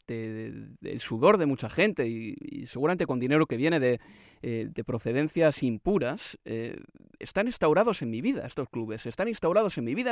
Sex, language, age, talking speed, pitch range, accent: male, Spanish, 30-49, 190 wpm, 130-195 Hz, Spanish